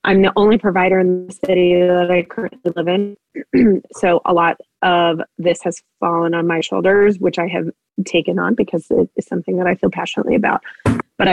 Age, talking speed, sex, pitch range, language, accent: 20-39, 195 wpm, female, 170-195 Hz, English, American